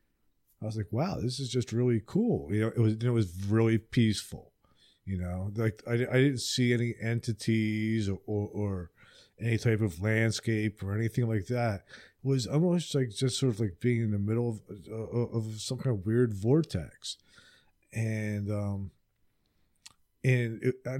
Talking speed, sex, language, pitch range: 175 wpm, male, English, 100-120 Hz